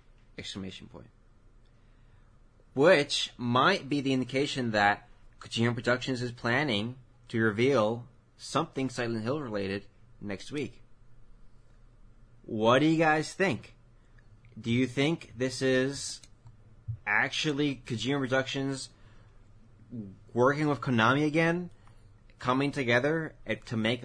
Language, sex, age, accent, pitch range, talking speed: English, male, 20-39, American, 105-130 Hz, 100 wpm